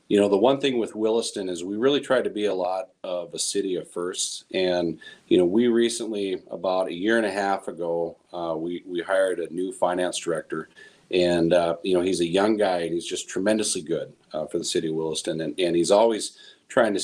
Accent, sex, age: American, male, 40-59